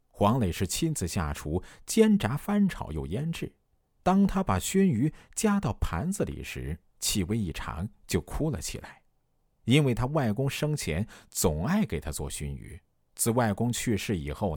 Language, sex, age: Chinese, male, 50-69